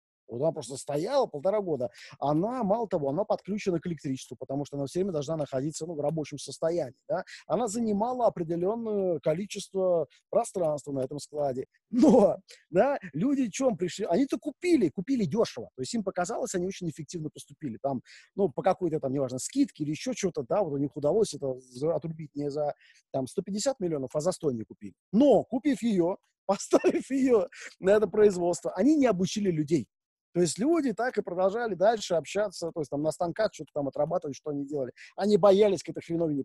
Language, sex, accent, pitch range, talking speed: Russian, male, native, 150-220 Hz, 190 wpm